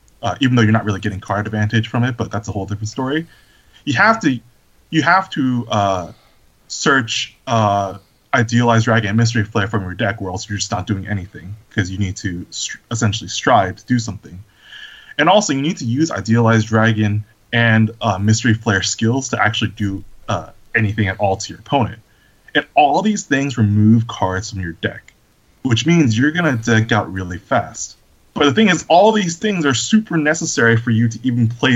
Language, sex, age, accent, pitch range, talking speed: English, male, 20-39, American, 105-130 Hz, 200 wpm